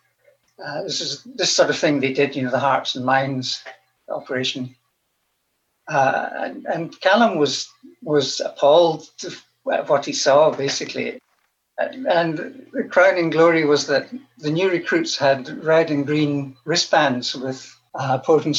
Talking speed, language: 155 wpm, English